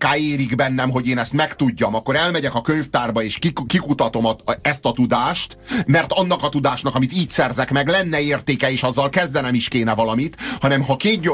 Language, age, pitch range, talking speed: Hungarian, 30-49, 125-155 Hz, 195 wpm